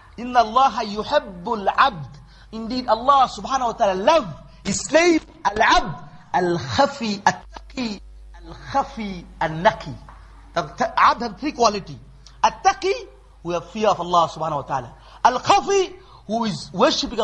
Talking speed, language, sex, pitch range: 105 wpm, English, male, 180-270 Hz